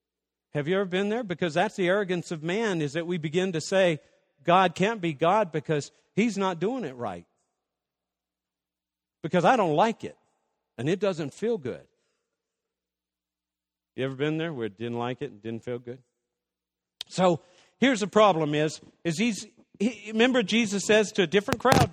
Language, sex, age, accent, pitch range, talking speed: English, male, 50-69, American, 135-190 Hz, 180 wpm